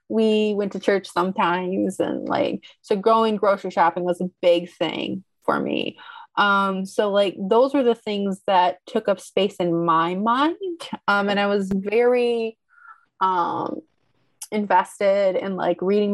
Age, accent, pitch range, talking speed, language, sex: 20-39, American, 180-220 Hz, 155 wpm, English, female